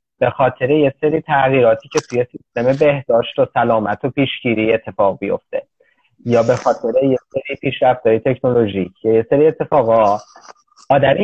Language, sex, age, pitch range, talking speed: Persian, male, 30-49, 115-150 Hz, 140 wpm